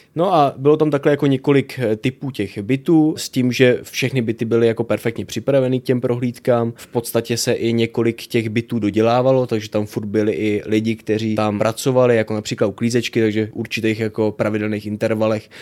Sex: male